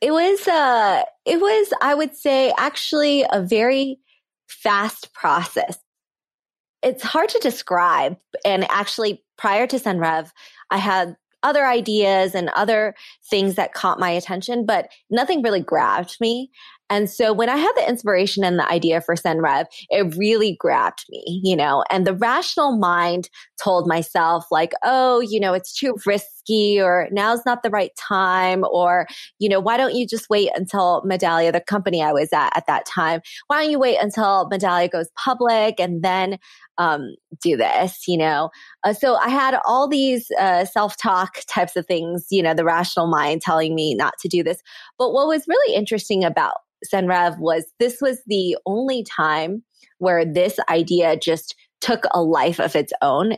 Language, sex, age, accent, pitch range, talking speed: English, female, 20-39, American, 175-245 Hz, 170 wpm